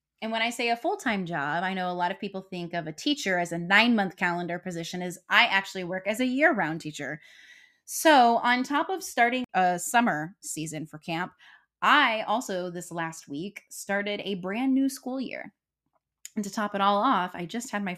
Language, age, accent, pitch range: English, 10-29, American, 170-235 Hz